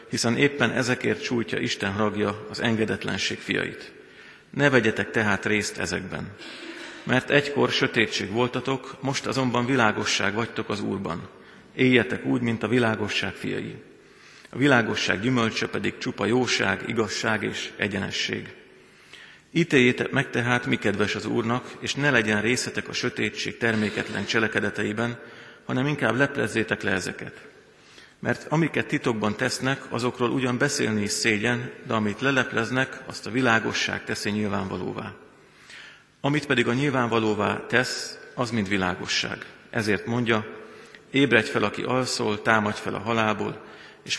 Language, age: Hungarian, 50-69